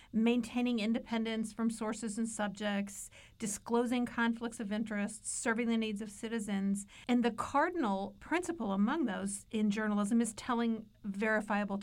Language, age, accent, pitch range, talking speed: English, 50-69, American, 210-245 Hz, 130 wpm